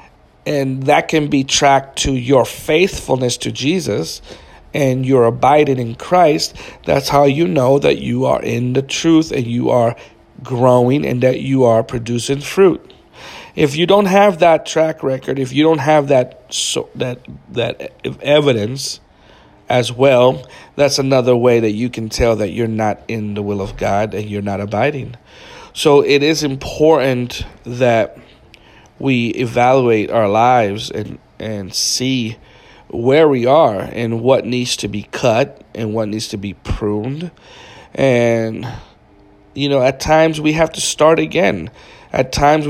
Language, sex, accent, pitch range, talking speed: English, male, American, 115-140 Hz, 155 wpm